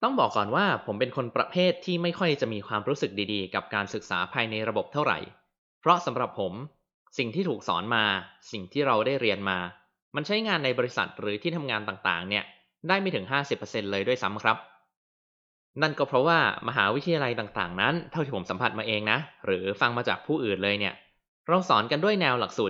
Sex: male